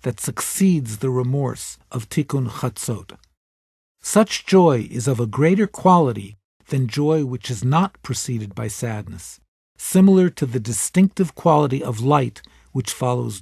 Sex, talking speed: male, 140 wpm